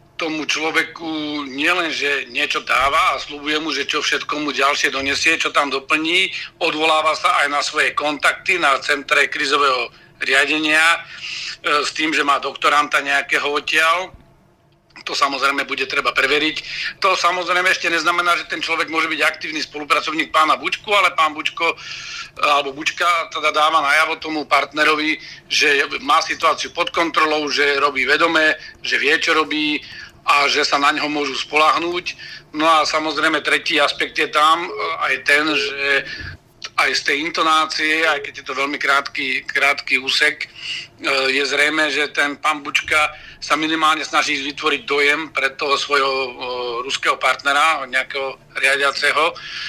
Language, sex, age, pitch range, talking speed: Slovak, male, 40-59, 140-160 Hz, 145 wpm